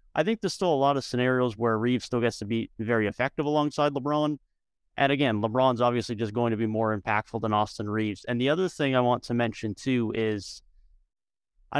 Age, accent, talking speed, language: 30-49, American, 215 wpm, English